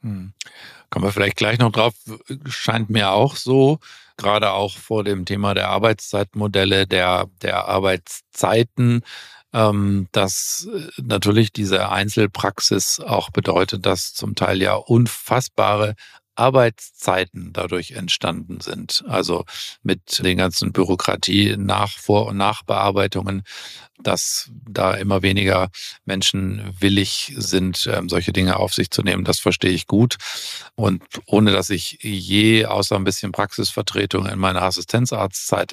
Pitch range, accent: 95-110 Hz, German